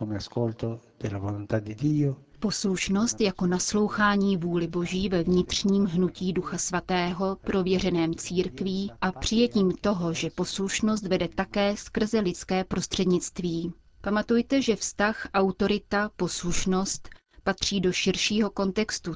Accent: native